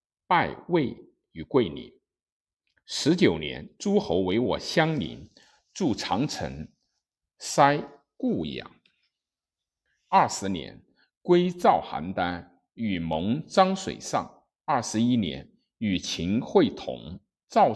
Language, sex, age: Chinese, male, 50-69